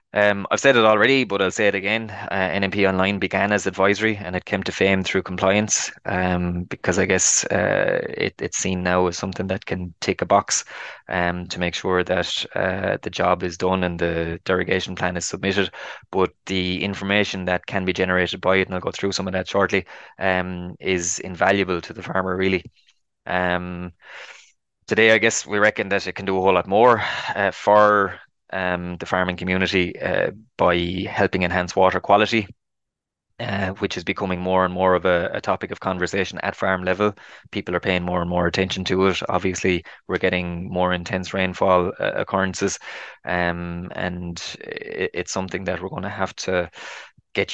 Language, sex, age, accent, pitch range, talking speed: English, male, 20-39, Irish, 90-95 Hz, 190 wpm